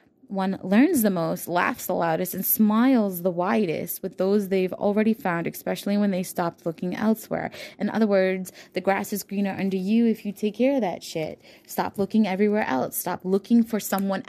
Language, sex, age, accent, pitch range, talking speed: English, female, 20-39, American, 175-225 Hz, 195 wpm